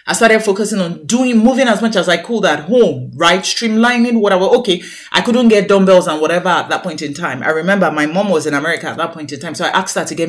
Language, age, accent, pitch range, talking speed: English, 30-49, Nigerian, 160-215 Hz, 270 wpm